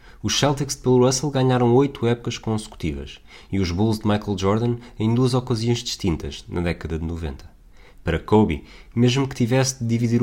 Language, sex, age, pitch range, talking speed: Portuguese, male, 20-39, 95-120 Hz, 175 wpm